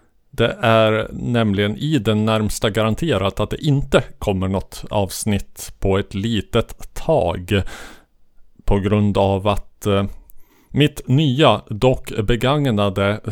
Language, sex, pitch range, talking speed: Swedish, male, 100-120 Hz, 115 wpm